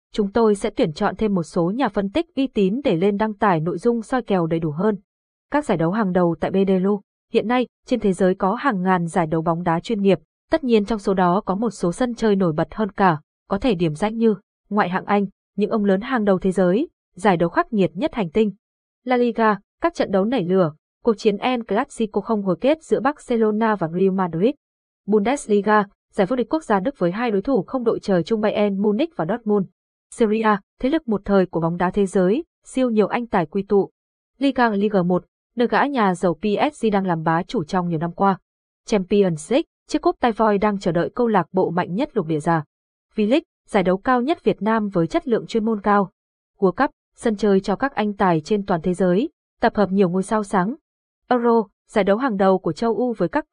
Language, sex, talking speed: Vietnamese, female, 235 wpm